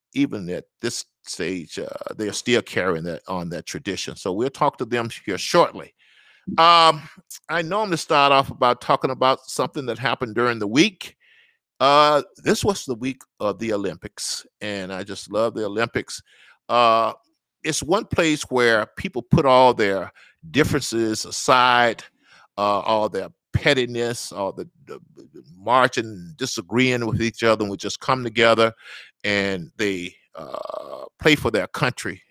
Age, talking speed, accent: 50-69, 160 wpm, American